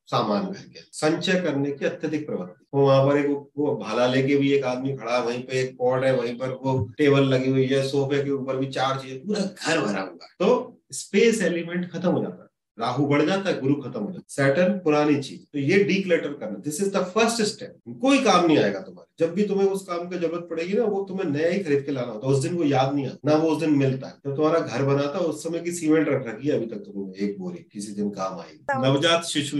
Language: Hindi